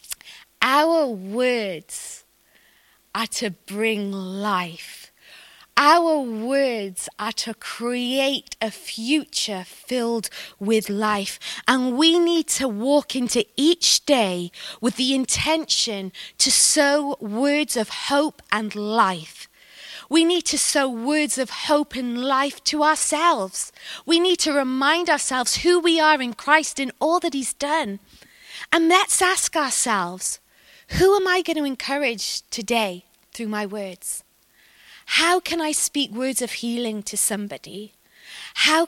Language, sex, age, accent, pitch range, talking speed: English, female, 20-39, British, 210-290 Hz, 130 wpm